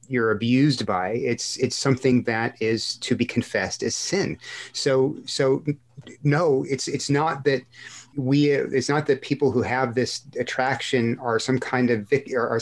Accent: American